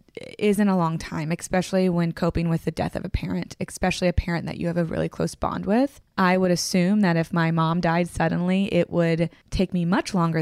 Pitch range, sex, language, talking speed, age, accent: 170-200 Hz, female, English, 230 wpm, 20-39, American